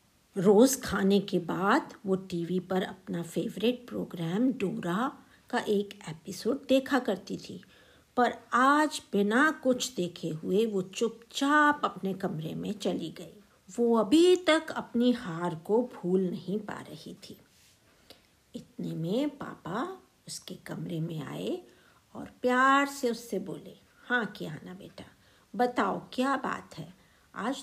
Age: 50-69